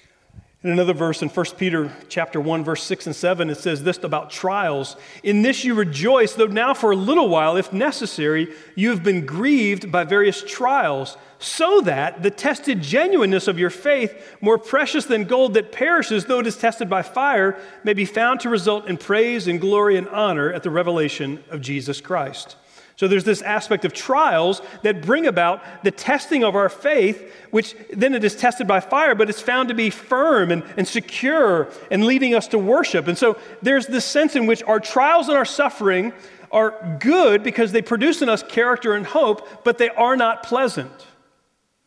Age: 40-59